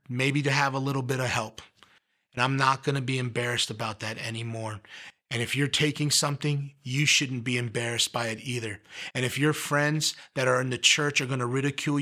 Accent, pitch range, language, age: American, 120-145 Hz, English, 30-49